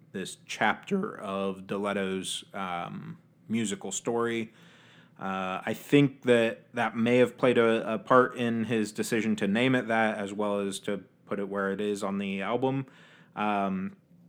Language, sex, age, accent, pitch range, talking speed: English, male, 30-49, American, 105-140 Hz, 160 wpm